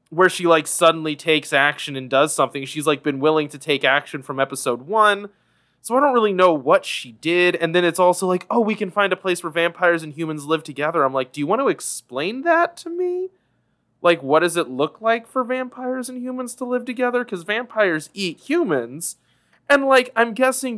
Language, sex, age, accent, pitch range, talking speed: English, male, 20-39, American, 150-215 Hz, 215 wpm